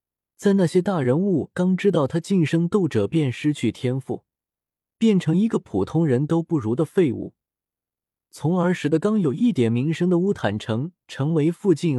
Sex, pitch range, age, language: male, 115-175 Hz, 20-39, Chinese